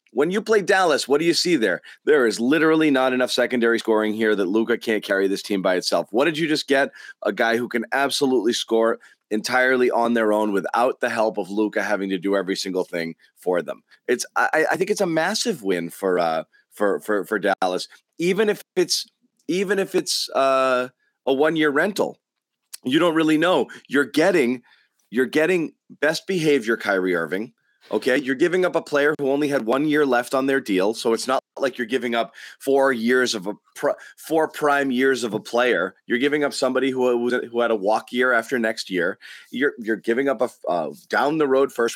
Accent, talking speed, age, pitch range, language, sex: American, 205 wpm, 30-49, 115-185 Hz, English, male